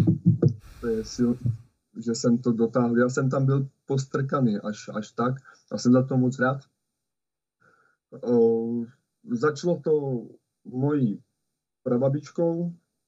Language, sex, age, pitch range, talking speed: Slovak, male, 20-39, 120-145 Hz, 120 wpm